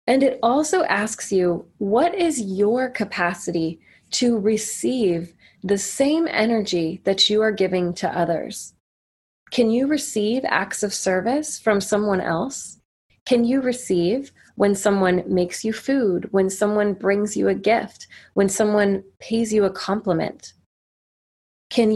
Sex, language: female, English